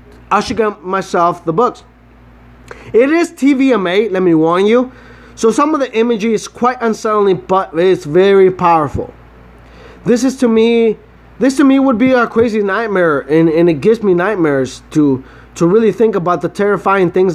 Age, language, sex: 20-39, English, male